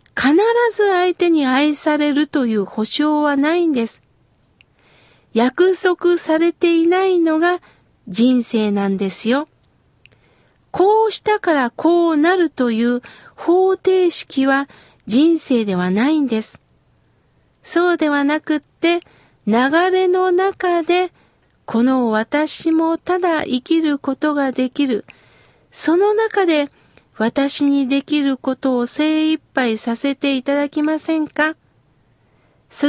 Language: Japanese